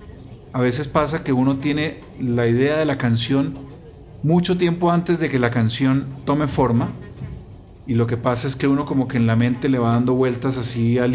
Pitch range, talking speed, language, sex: 120-145 Hz, 205 wpm, Spanish, male